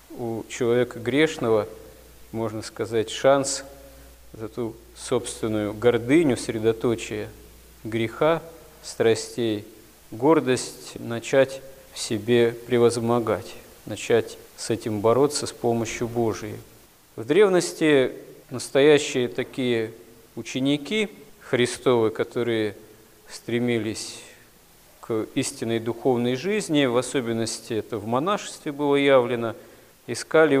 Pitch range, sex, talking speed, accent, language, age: 115-140 Hz, male, 90 wpm, native, Russian, 40-59